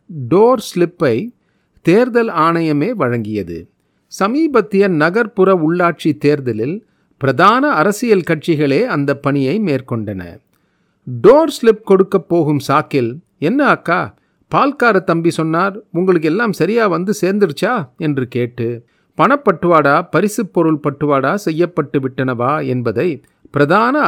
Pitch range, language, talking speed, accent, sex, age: 140-195 Hz, Tamil, 95 wpm, native, male, 40-59